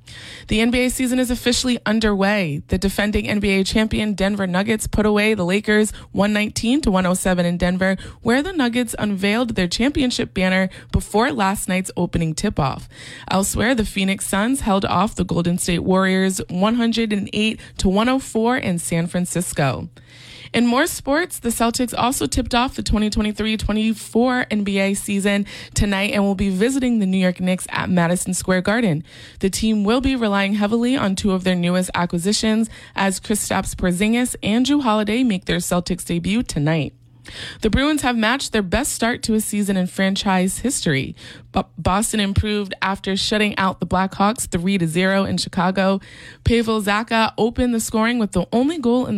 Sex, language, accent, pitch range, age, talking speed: female, English, American, 185-230 Hz, 20-39, 155 wpm